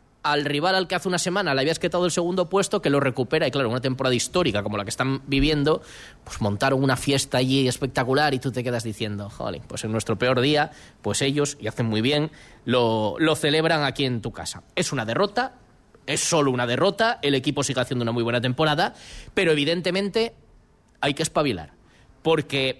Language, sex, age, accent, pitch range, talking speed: Spanish, male, 20-39, Spanish, 130-175 Hz, 205 wpm